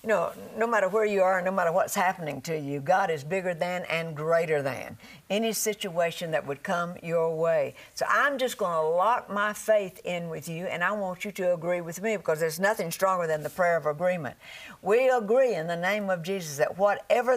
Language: English